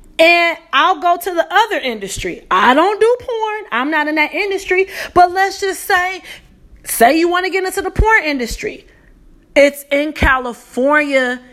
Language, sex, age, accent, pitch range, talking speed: English, female, 30-49, American, 255-325 Hz, 165 wpm